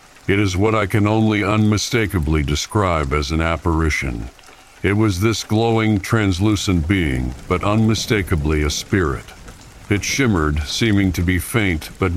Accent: American